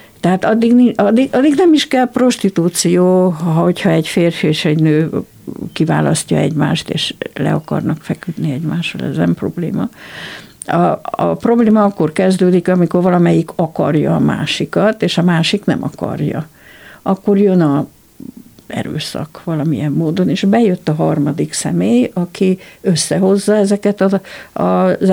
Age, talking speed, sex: 60-79, 125 wpm, female